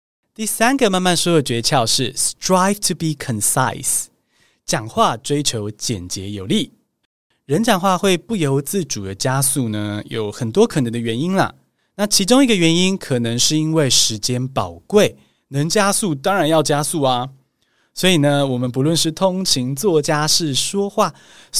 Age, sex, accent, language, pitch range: 20-39, male, native, Chinese, 120-190 Hz